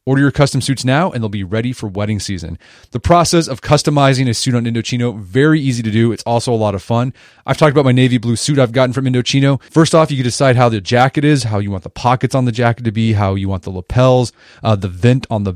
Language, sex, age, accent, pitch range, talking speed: English, male, 30-49, American, 105-140 Hz, 270 wpm